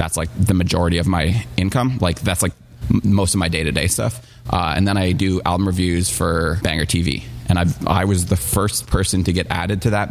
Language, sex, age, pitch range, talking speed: English, male, 20-39, 85-105 Hz, 215 wpm